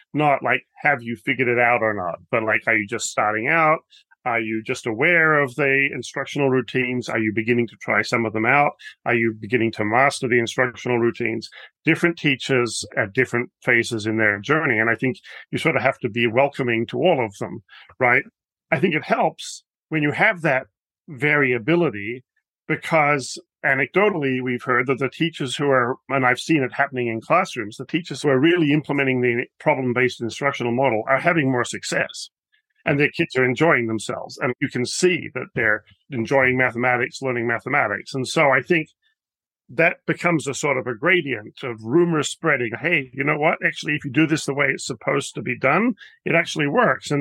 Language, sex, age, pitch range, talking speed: English, male, 40-59, 120-155 Hz, 195 wpm